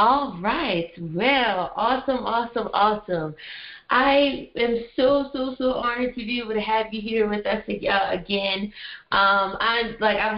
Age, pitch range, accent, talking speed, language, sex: 20-39, 190-230 Hz, American, 150 wpm, English, female